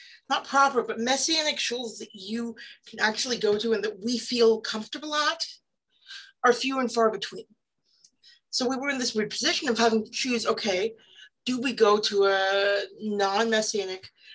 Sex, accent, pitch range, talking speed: female, American, 210-270 Hz, 165 wpm